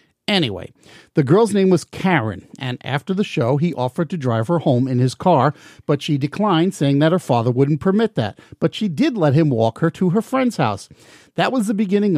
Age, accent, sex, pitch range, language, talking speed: 50-69, American, male, 130-175 Hz, English, 215 wpm